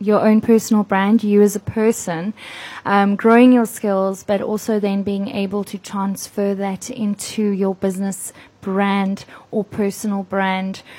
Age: 20-39